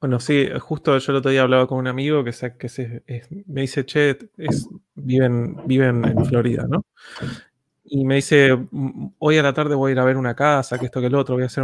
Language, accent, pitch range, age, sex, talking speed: Spanish, Argentinian, 125-145 Hz, 20-39, male, 240 wpm